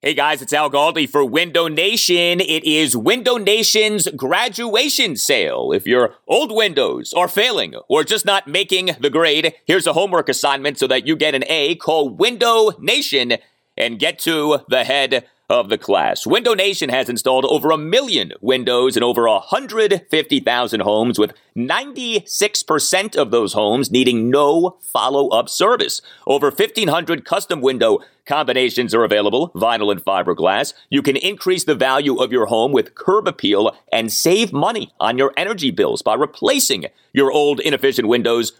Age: 30-49